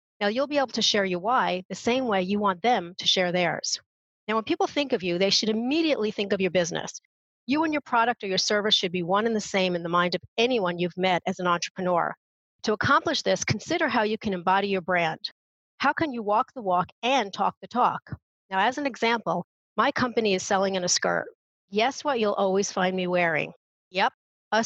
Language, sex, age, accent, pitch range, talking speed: English, female, 40-59, American, 190-255 Hz, 225 wpm